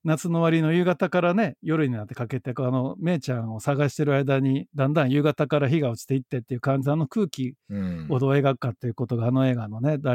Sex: male